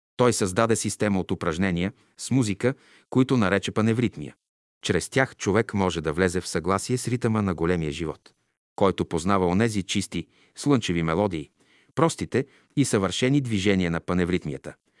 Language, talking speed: Bulgarian, 140 wpm